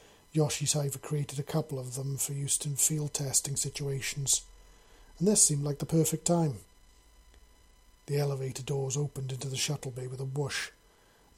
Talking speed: 170 wpm